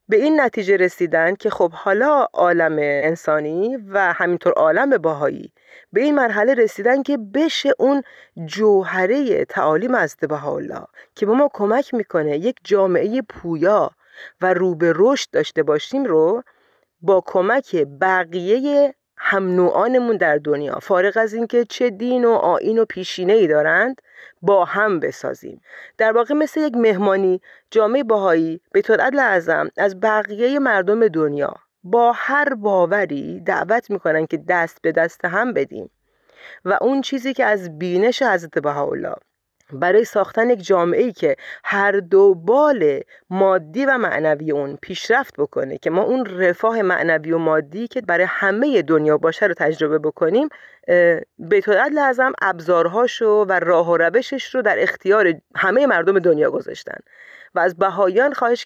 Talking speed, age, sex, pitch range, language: 145 wpm, 40-59, female, 175-255 Hz, Persian